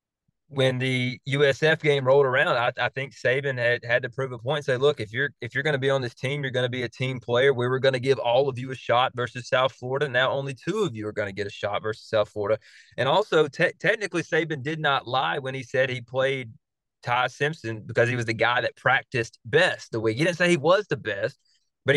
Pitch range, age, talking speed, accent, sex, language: 120-145 Hz, 20-39, 260 wpm, American, male, English